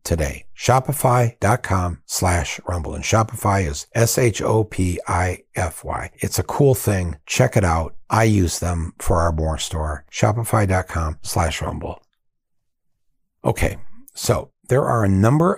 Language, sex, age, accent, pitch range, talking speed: English, male, 60-79, American, 85-115 Hz, 120 wpm